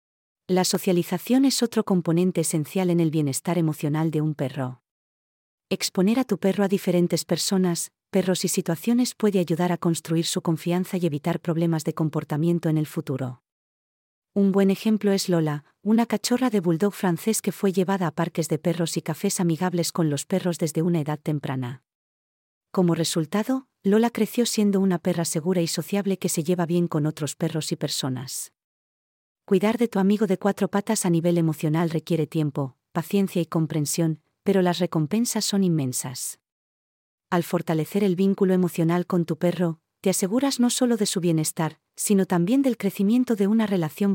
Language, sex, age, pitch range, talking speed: Spanish, female, 40-59, 155-195 Hz, 170 wpm